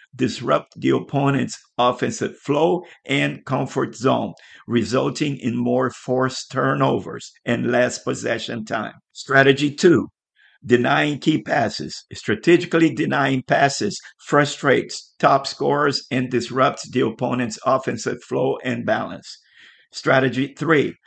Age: 50-69